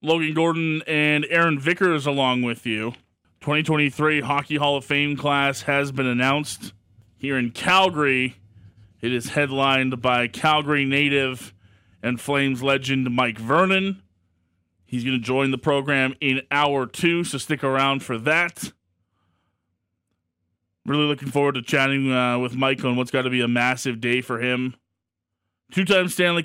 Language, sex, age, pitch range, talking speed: English, male, 20-39, 120-155 Hz, 145 wpm